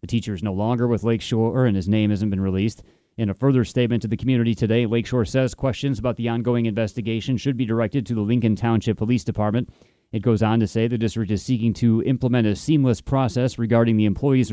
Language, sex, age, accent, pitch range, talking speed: English, male, 30-49, American, 110-125 Hz, 225 wpm